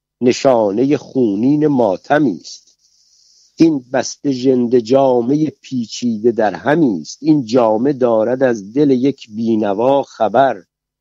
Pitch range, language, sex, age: 115-145 Hz, Persian, male, 60-79